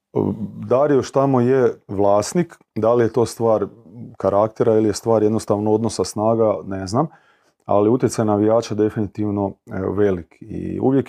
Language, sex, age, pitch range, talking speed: Croatian, male, 30-49, 95-115 Hz, 140 wpm